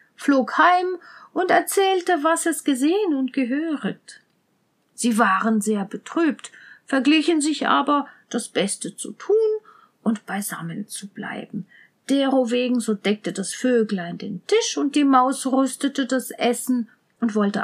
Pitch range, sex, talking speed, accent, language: 225-305 Hz, female, 135 wpm, German, German